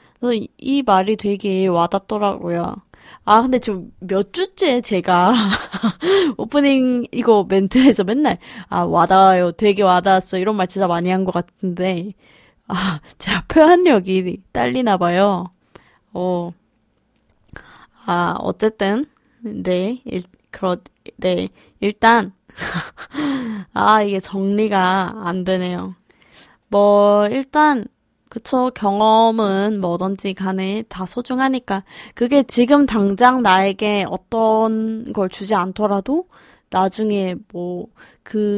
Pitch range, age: 185-240 Hz, 20-39